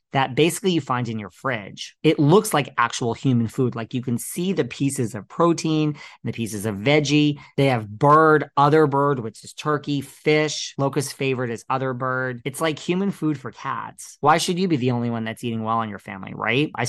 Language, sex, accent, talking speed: English, male, American, 215 wpm